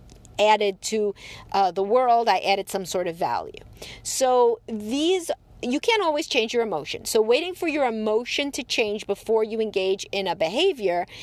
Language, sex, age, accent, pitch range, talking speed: English, female, 40-59, American, 205-275 Hz, 170 wpm